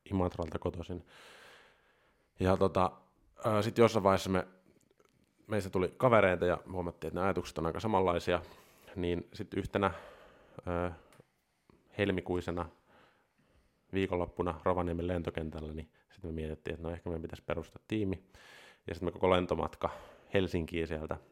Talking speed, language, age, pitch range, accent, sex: 120 wpm, Finnish, 30-49, 80-95 Hz, native, male